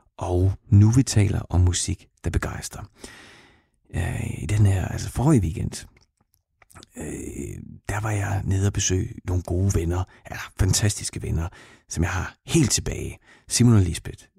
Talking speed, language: 140 wpm, Danish